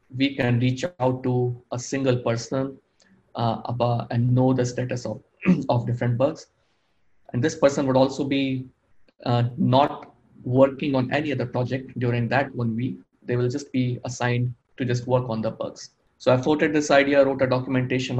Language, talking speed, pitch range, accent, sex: English, 175 wpm, 120-130 Hz, Indian, male